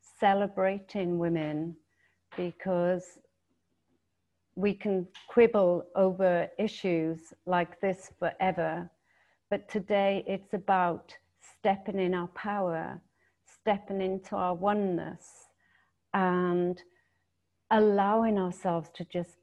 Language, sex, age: English, female, 50-69